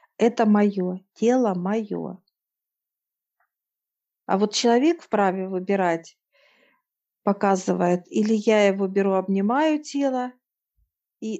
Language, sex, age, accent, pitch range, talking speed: Russian, female, 50-69, native, 185-215 Hz, 90 wpm